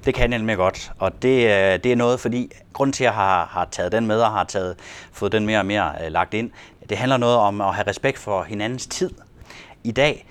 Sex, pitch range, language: male, 95-125 Hz, Danish